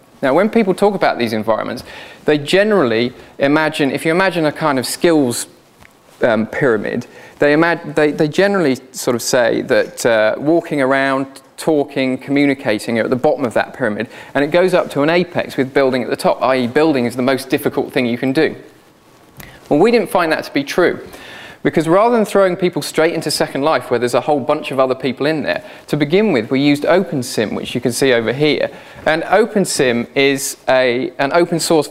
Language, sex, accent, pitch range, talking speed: English, male, British, 130-165 Hz, 205 wpm